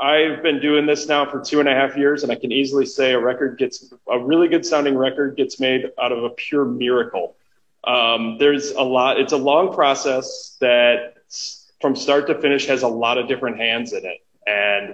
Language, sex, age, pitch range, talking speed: English, male, 30-49, 120-155 Hz, 215 wpm